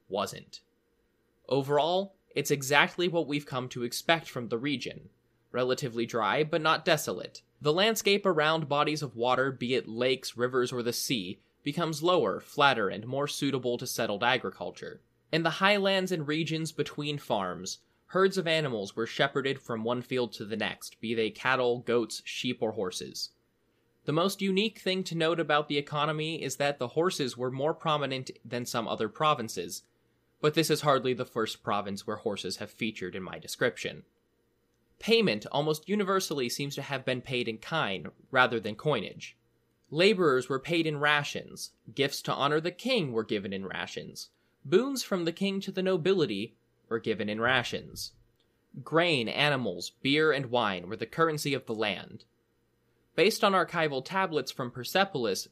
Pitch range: 120-160 Hz